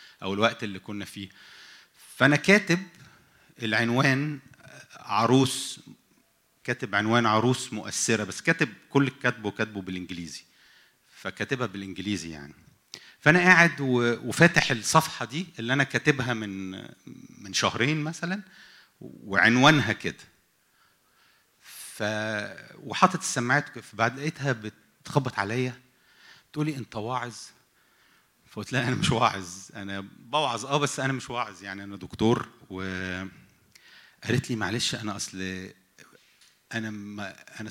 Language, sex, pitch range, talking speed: English, male, 105-150 Hz, 105 wpm